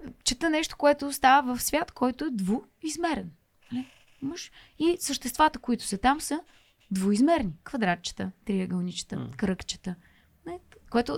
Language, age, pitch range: Bulgarian, 20-39, 175-260 Hz